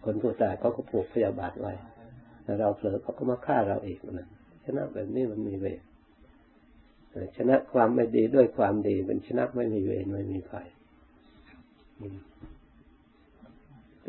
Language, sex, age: Thai, male, 60-79